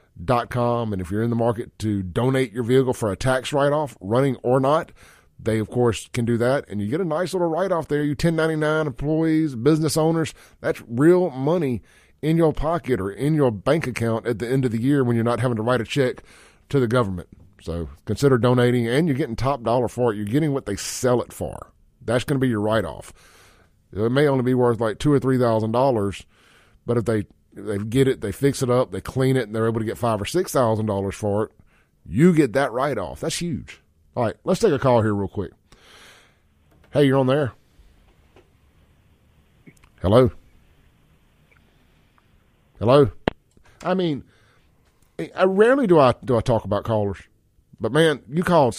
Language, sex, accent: English, male, American